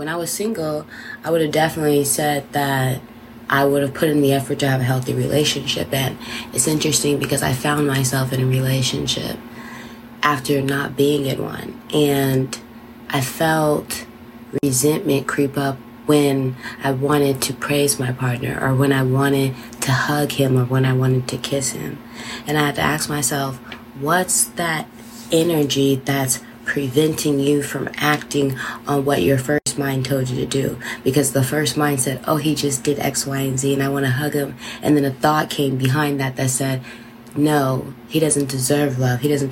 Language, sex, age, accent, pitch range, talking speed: English, female, 20-39, American, 130-145 Hz, 185 wpm